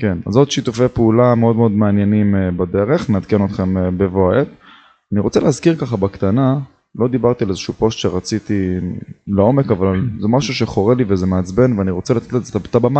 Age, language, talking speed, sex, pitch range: 20-39, Hebrew, 175 wpm, male, 100-120 Hz